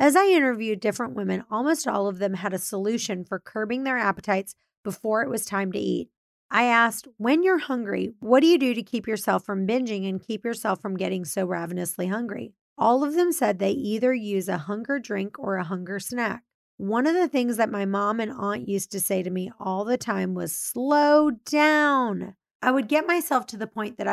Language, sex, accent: English, female, American